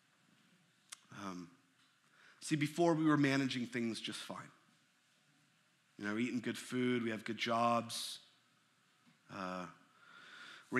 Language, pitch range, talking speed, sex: English, 110-130 Hz, 110 wpm, male